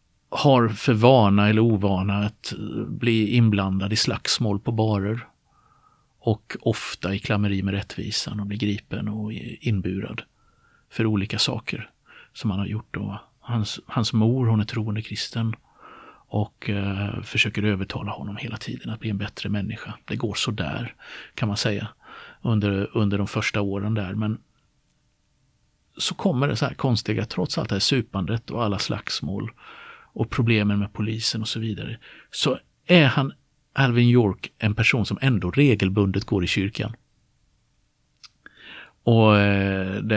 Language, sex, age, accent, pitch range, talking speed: Swedish, male, 50-69, native, 100-115 Hz, 150 wpm